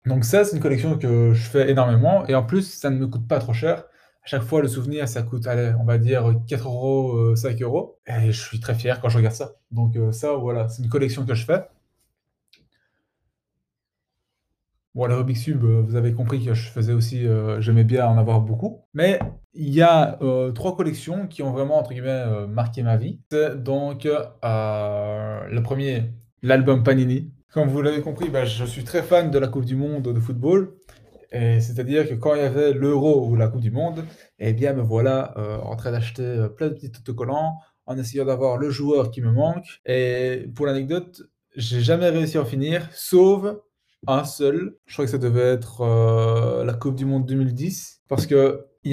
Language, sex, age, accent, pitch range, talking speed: French, male, 20-39, French, 115-145 Hz, 205 wpm